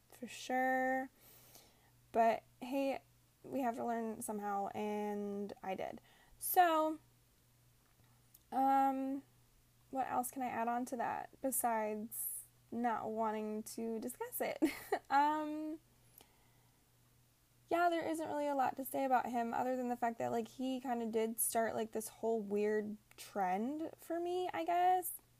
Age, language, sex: 10-29, English, female